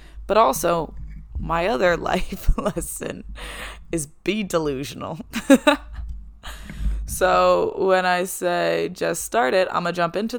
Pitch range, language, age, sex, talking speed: 145-205 Hz, English, 20-39, female, 115 wpm